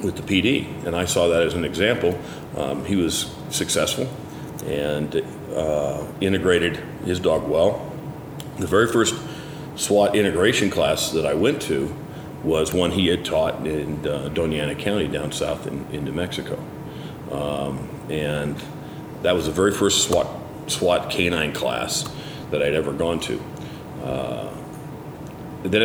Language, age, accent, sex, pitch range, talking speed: English, 40-59, American, male, 80-100 Hz, 145 wpm